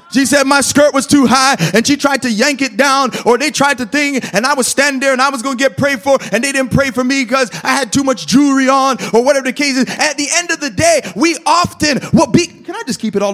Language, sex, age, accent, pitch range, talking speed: English, male, 30-49, American, 220-290 Hz, 290 wpm